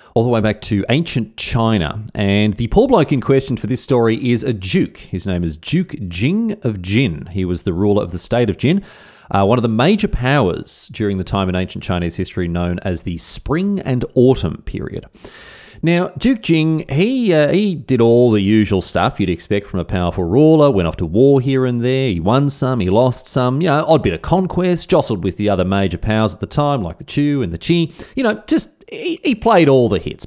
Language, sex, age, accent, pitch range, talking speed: English, male, 30-49, Australian, 95-150 Hz, 225 wpm